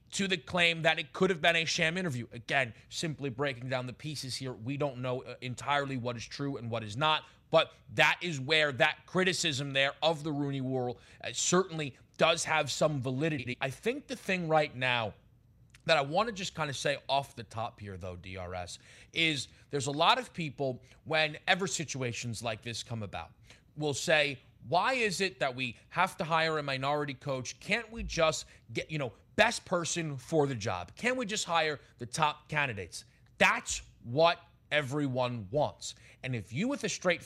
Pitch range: 125-170 Hz